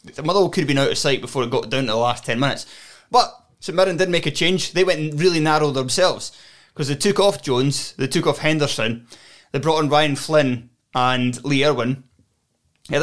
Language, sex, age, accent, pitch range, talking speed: English, male, 20-39, British, 120-155 Hz, 215 wpm